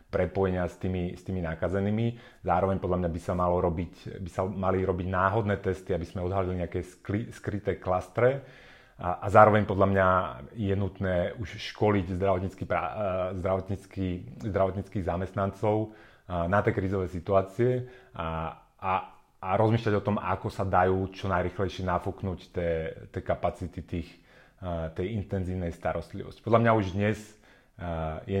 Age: 30-49